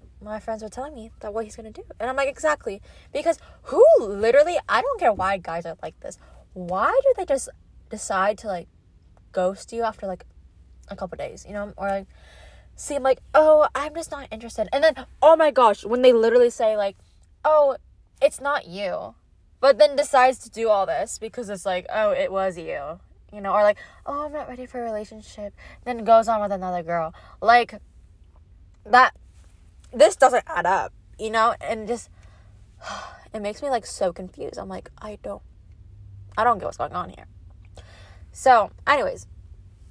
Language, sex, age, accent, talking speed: English, female, 10-29, American, 190 wpm